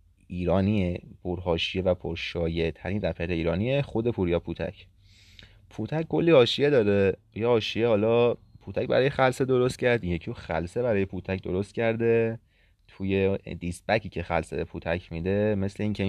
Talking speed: 140 wpm